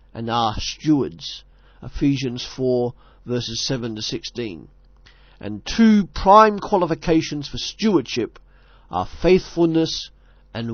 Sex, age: male, 50-69